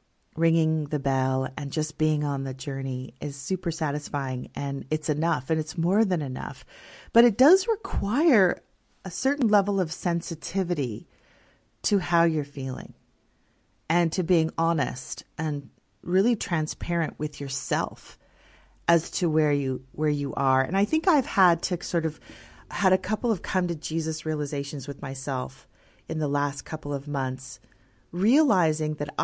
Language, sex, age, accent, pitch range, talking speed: English, female, 40-59, American, 145-185 Hz, 155 wpm